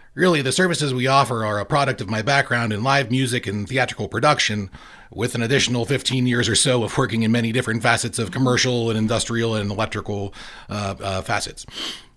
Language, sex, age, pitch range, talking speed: English, male, 30-49, 110-130 Hz, 190 wpm